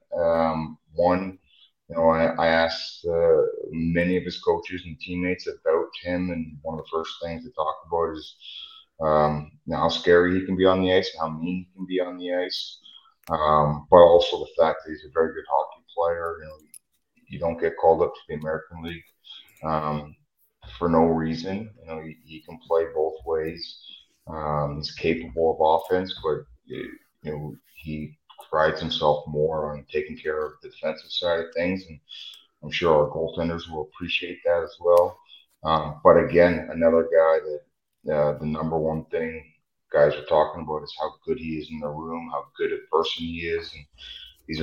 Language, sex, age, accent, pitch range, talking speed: English, male, 30-49, American, 80-90 Hz, 190 wpm